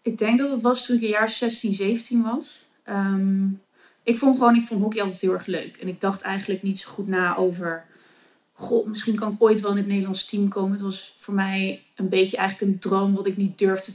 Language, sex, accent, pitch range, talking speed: Dutch, female, Dutch, 185-215 Hz, 240 wpm